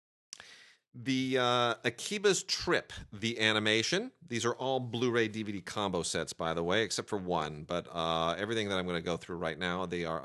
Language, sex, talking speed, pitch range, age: English, male, 185 wpm, 90-115 Hz, 40-59